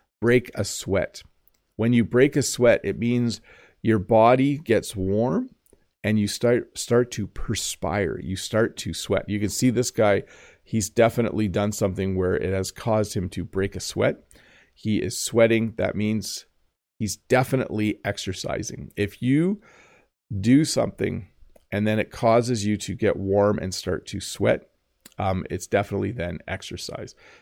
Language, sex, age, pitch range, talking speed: English, male, 40-59, 100-120 Hz, 155 wpm